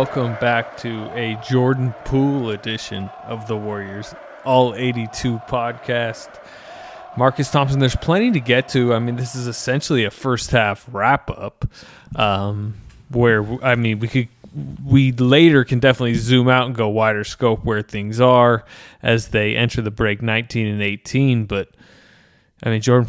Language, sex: English, male